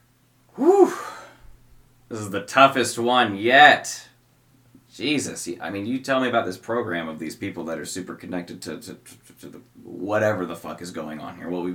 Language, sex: English, male